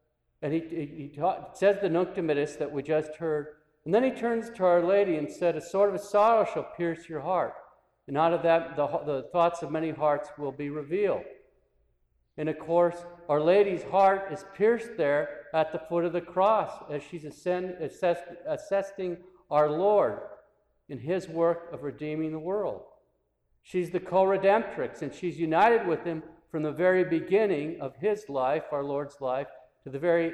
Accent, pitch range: American, 150-180 Hz